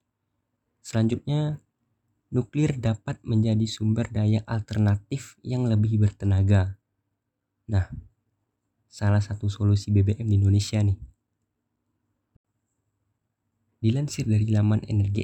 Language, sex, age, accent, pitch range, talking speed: Indonesian, male, 20-39, native, 105-115 Hz, 85 wpm